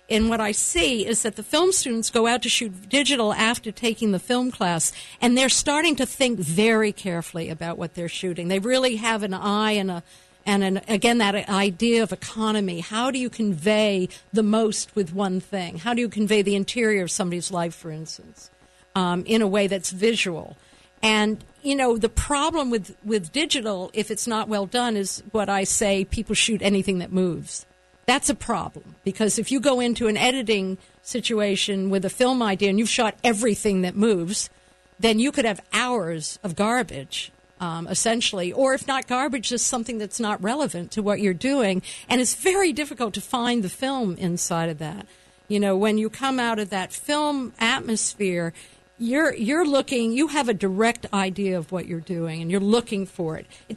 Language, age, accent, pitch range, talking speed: English, 50-69, American, 190-240 Hz, 190 wpm